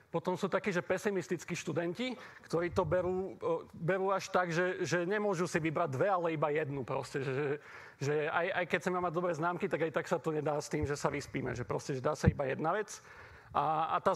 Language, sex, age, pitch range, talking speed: Slovak, male, 40-59, 155-180 Hz, 220 wpm